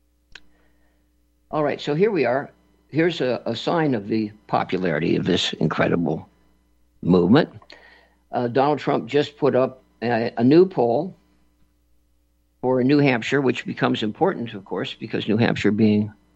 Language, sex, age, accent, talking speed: English, male, 60-79, American, 145 wpm